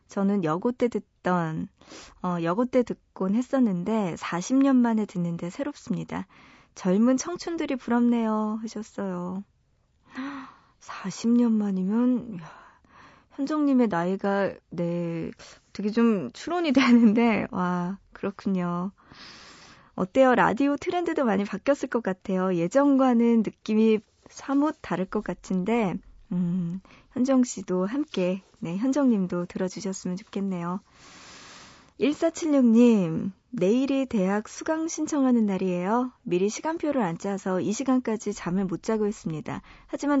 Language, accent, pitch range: Korean, native, 185-255 Hz